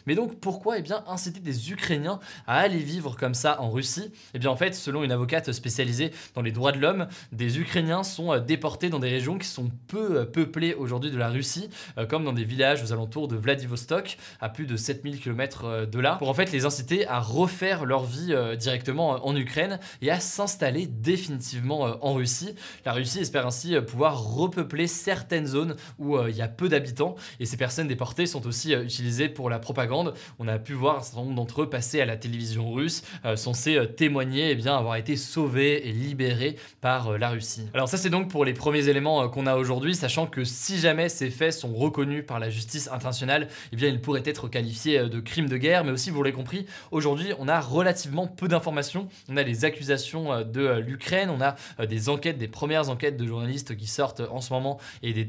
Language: French